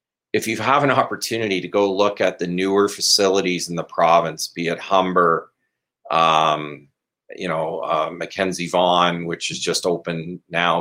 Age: 40-59